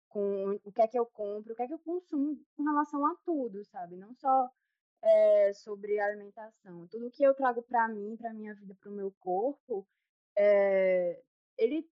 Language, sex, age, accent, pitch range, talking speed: Portuguese, female, 20-39, Brazilian, 200-260 Hz, 175 wpm